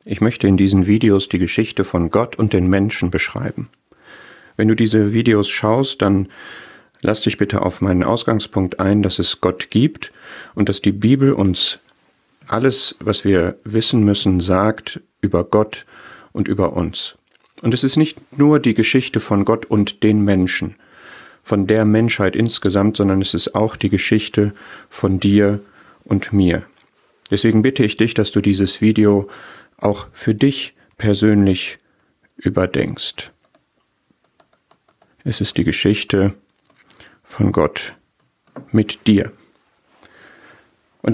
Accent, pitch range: German, 100-115 Hz